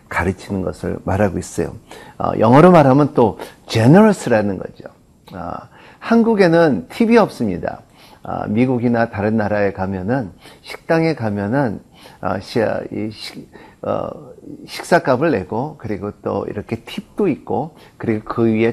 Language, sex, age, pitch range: Korean, male, 50-69, 110-145 Hz